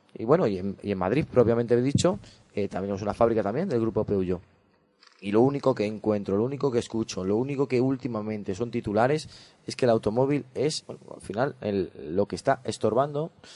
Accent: Spanish